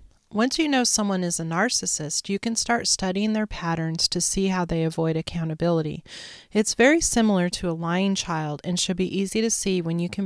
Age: 30-49